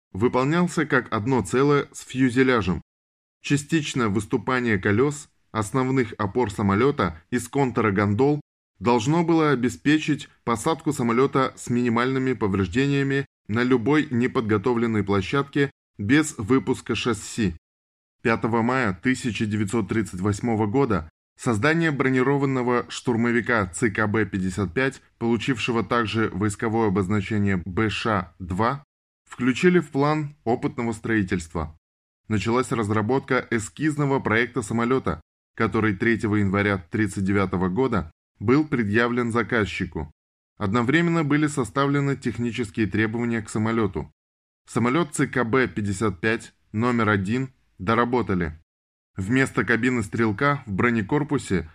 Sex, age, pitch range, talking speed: male, 20-39, 105-130 Hz, 90 wpm